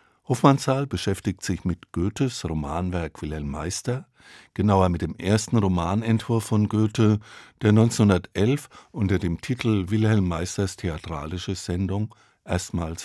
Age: 50-69